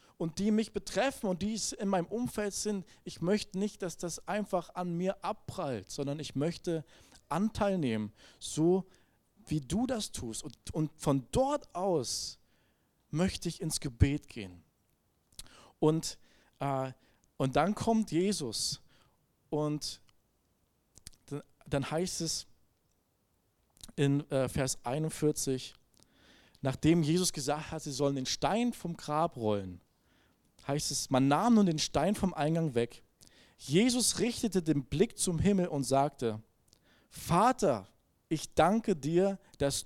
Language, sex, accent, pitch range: German, male, German, 135-185 Hz